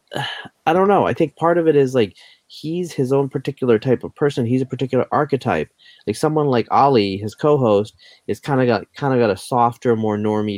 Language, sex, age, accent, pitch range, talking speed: English, male, 30-49, American, 105-130 Hz, 215 wpm